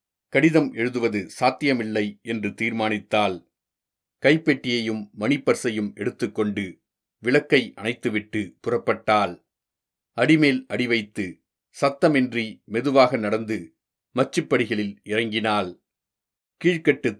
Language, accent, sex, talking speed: Tamil, native, male, 65 wpm